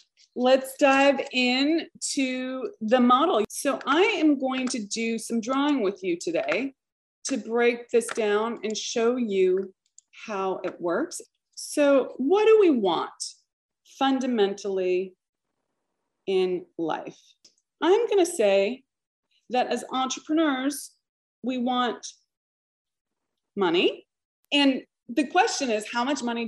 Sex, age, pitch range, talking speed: female, 30-49, 215-325 Hz, 120 wpm